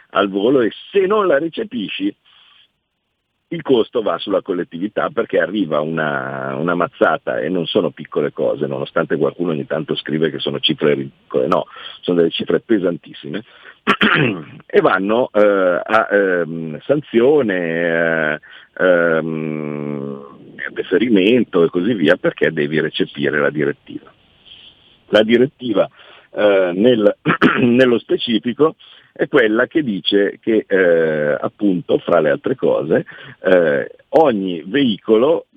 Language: Italian